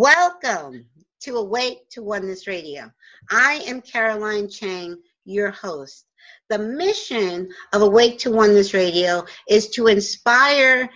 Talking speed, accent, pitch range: 120 wpm, American, 195-265 Hz